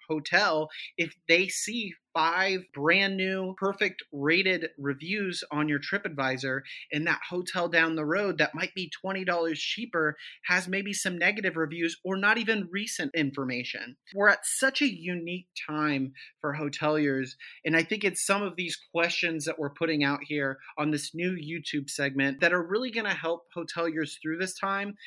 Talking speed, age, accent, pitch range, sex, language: 170 wpm, 30-49, American, 150-180 Hz, male, English